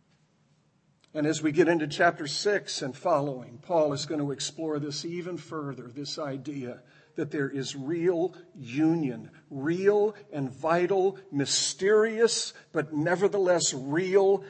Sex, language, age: male, English, 50-69